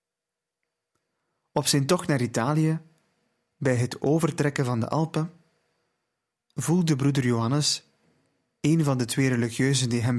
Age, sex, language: 30-49, male, Dutch